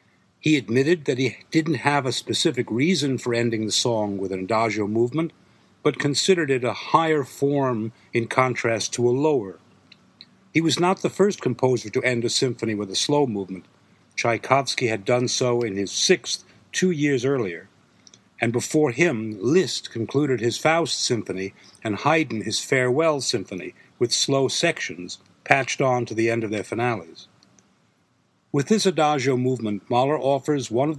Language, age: English, 60-79